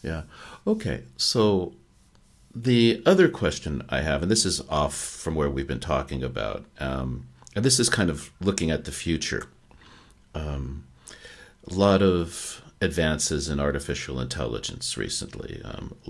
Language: English